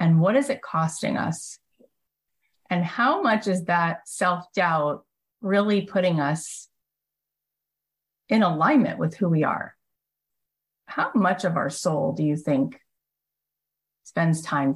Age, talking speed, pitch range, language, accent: 30-49, 125 wpm, 150-190 Hz, English, American